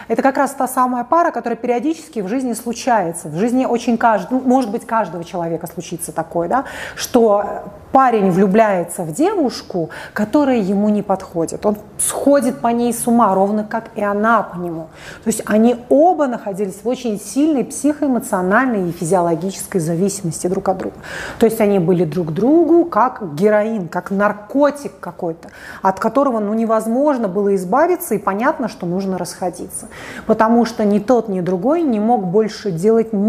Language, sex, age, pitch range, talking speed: Russian, female, 30-49, 195-255 Hz, 165 wpm